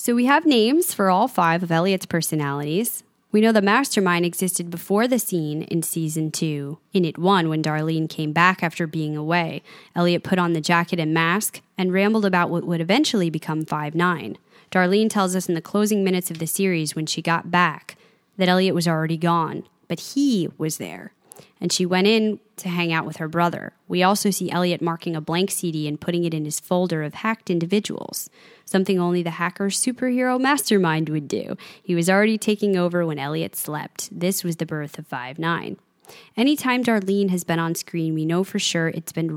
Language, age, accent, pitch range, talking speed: English, 20-39, American, 165-200 Hz, 200 wpm